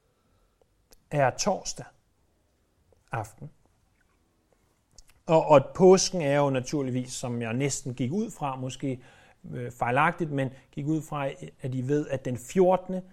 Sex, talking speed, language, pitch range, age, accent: male, 120 wpm, Danish, 110-160 Hz, 30-49, native